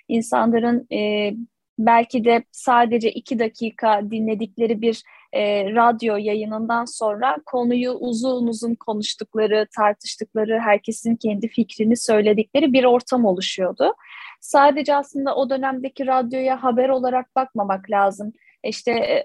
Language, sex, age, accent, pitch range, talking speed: Turkish, female, 10-29, native, 220-265 Hz, 110 wpm